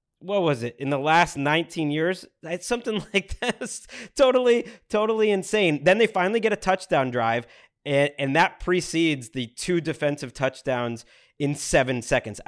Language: English